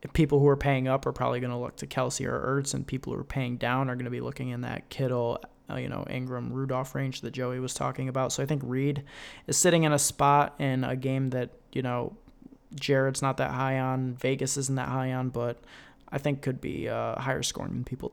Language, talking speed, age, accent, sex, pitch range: English, 240 wpm, 20-39, American, male, 125-140 Hz